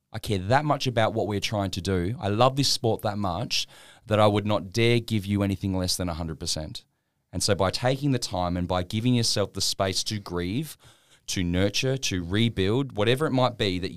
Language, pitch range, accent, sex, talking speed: English, 85-110 Hz, Australian, male, 215 wpm